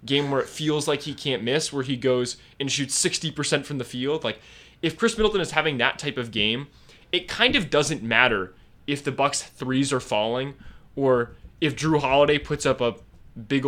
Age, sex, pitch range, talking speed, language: 20-39, male, 125-160 Hz, 205 wpm, English